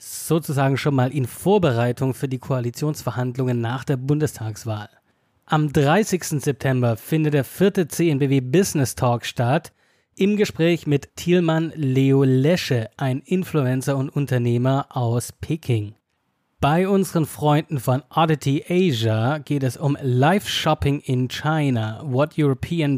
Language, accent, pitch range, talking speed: German, German, 125-160 Hz, 125 wpm